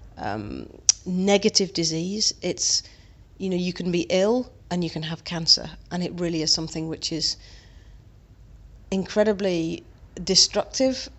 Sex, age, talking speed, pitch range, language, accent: female, 40-59, 130 wpm, 160-185 Hz, English, British